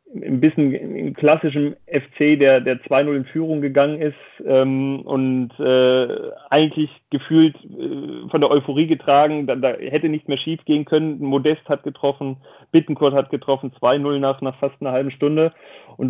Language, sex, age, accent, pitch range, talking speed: German, male, 30-49, German, 125-145 Hz, 160 wpm